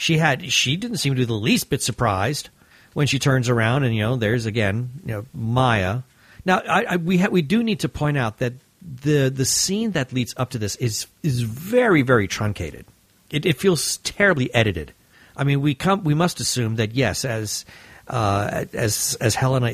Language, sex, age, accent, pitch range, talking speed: English, male, 50-69, American, 110-145 Hz, 205 wpm